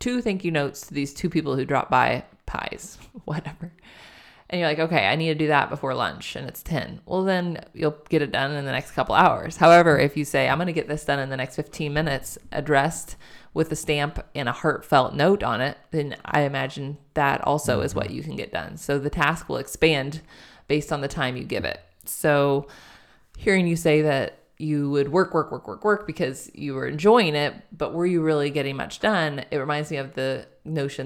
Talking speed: 225 wpm